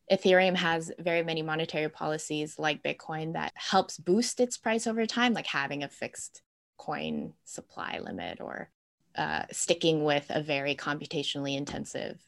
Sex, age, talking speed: female, 20-39, 145 wpm